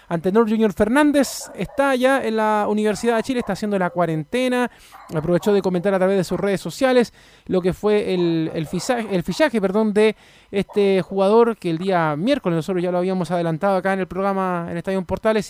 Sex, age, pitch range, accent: male, 20-39, 180-220 Hz, Argentinian